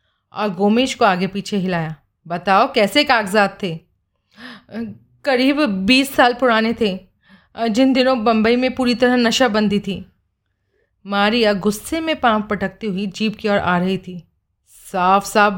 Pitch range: 190-260 Hz